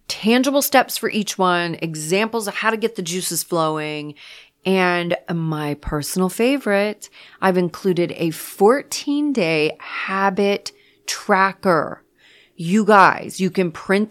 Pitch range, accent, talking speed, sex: 165-210 Hz, American, 120 wpm, female